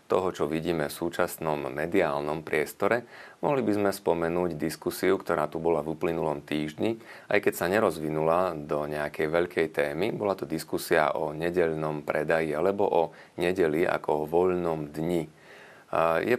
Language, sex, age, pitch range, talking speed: Slovak, male, 30-49, 80-85 Hz, 145 wpm